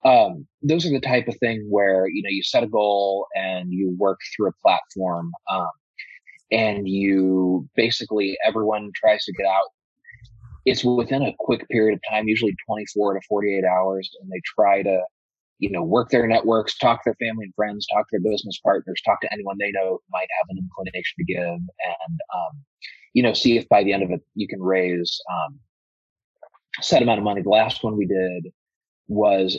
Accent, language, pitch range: American, English, 95-115 Hz